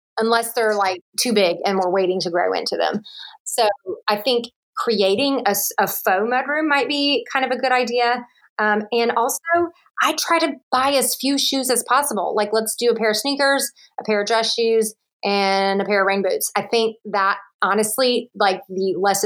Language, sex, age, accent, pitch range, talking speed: English, female, 30-49, American, 205-275 Hz, 200 wpm